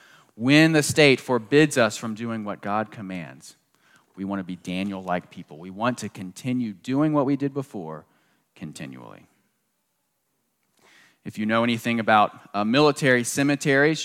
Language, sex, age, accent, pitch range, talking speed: English, male, 30-49, American, 100-130 Hz, 140 wpm